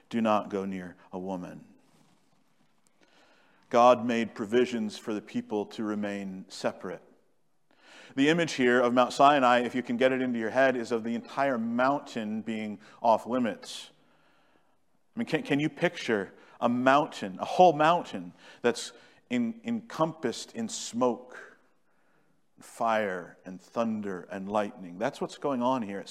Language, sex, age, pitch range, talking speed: English, male, 50-69, 110-140 Hz, 145 wpm